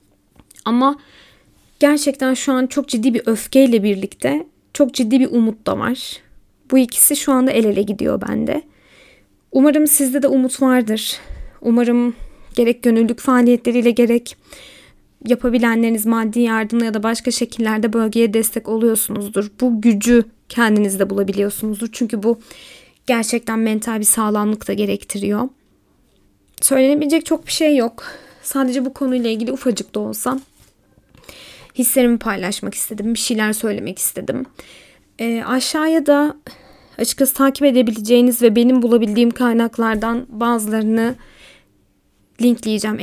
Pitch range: 220-255 Hz